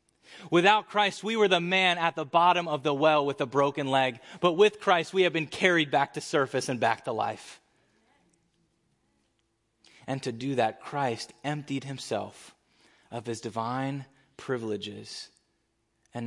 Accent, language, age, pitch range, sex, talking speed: American, English, 20-39, 115-155 Hz, male, 155 wpm